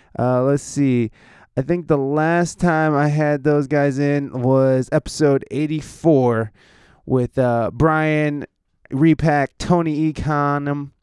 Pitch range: 140-185 Hz